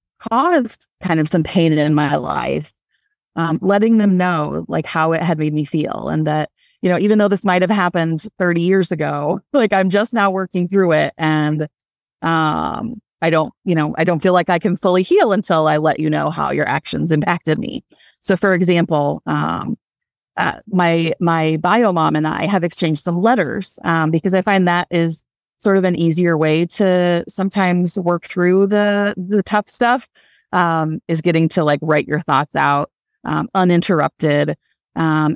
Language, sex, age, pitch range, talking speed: English, female, 30-49, 160-195 Hz, 185 wpm